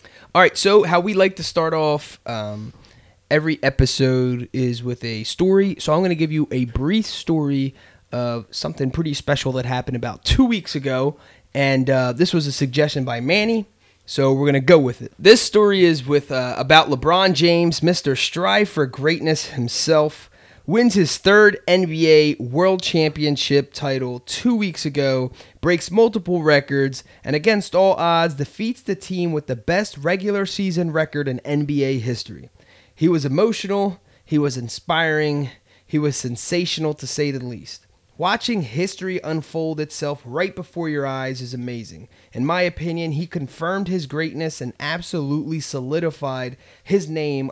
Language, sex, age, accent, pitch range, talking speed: English, male, 20-39, American, 125-170 Hz, 160 wpm